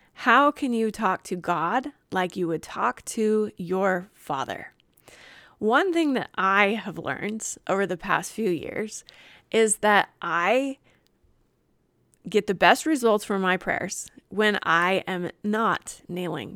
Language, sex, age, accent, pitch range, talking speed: English, female, 20-39, American, 180-215 Hz, 140 wpm